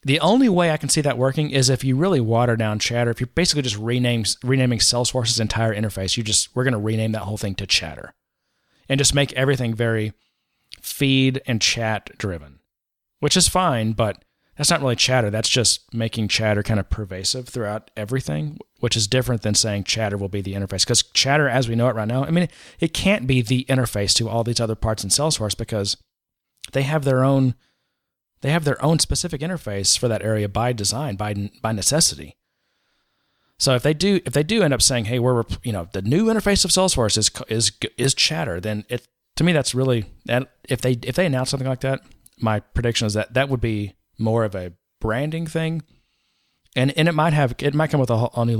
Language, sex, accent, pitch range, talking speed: English, male, American, 110-140 Hz, 215 wpm